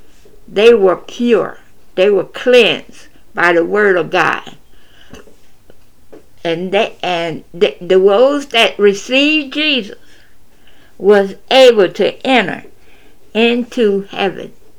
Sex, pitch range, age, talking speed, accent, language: female, 215-300 Hz, 60-79, 105 wpm, American, English